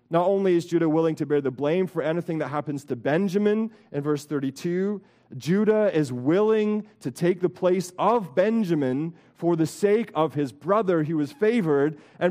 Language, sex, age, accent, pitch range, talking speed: English, male, 30-49, American, 135-190 Hz, 180 wpm